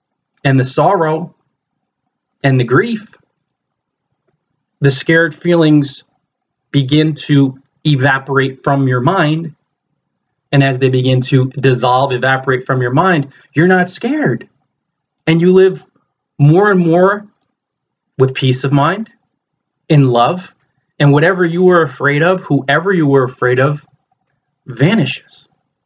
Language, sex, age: English, male, 30-49